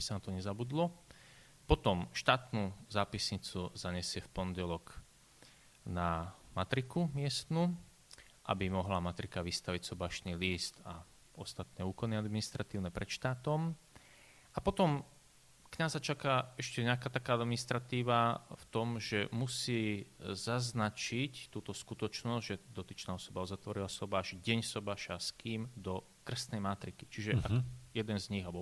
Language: Slovak